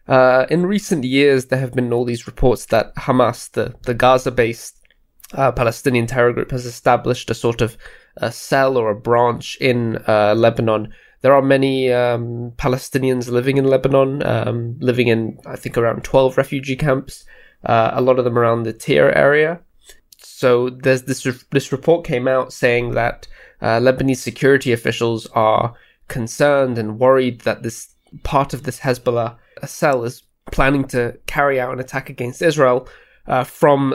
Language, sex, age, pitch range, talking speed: English, male, 20-39, 120-135 Hz, 170 wpm